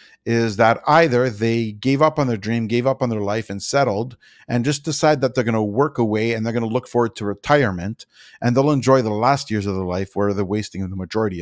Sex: male